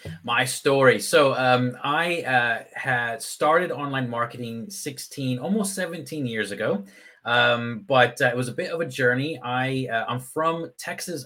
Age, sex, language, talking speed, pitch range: 30-49, male, English, 160 wpm, 120-155 Hz